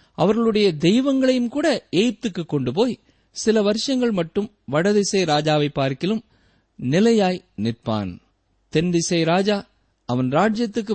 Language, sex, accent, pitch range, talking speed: Tamil, male, native, 130-215 Hz, 105 wpm